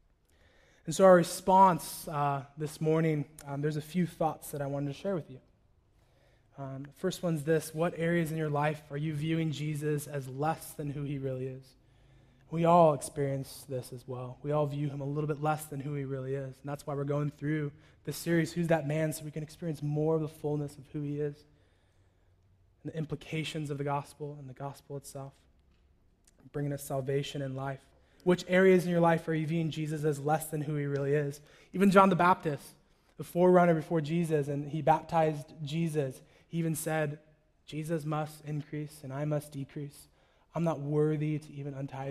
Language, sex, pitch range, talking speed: English, male, 140-160 Hz, 200 wpm